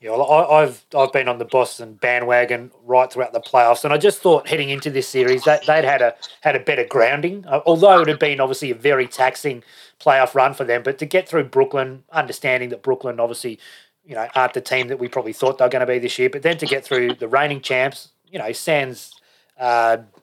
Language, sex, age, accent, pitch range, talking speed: English, male, 30-49, Australian, 125-155 Hz, 225 wpm